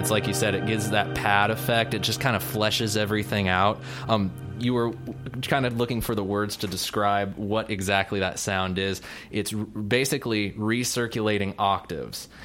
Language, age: English, 20-39